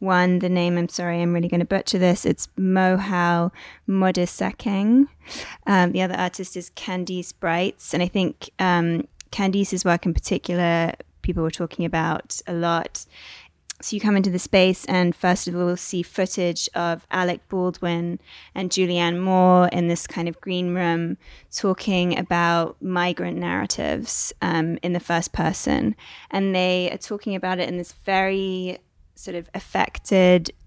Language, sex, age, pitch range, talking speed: English, female, 20-39, 175-190 Hz, 160 wpm